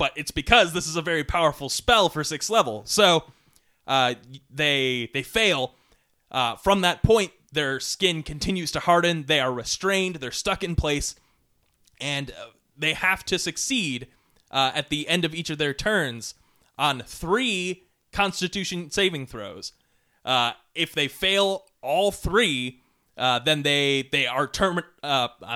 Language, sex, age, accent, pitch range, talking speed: English, male, 20-39, American, 135-180 Hz, 155 wpm